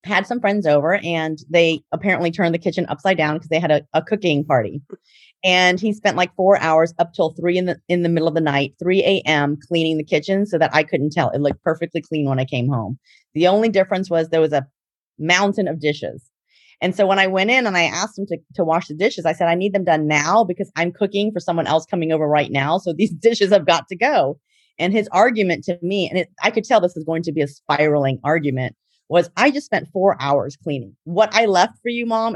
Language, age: English, 30-49